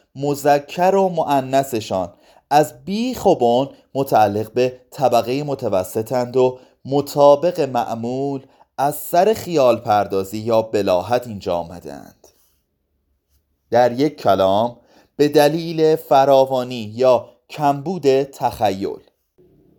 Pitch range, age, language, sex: 105-150 Hz, 30-49, Persian, male